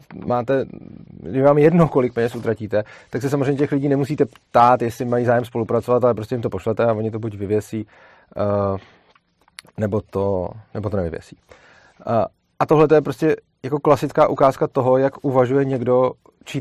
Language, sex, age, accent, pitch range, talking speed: Czech, male, 30-49, native, 115-140 Hz, 175 wpm